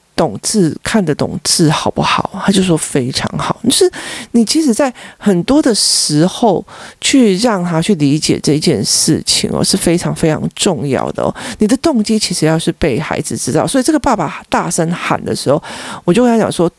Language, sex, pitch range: Chinese, male, 155-225 Hz